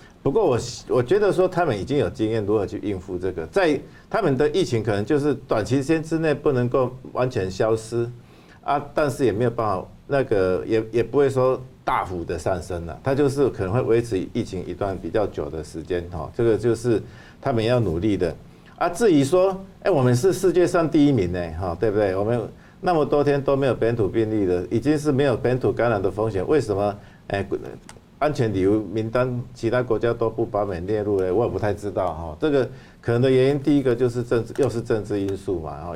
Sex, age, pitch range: male, 50-69, 100-130 Hz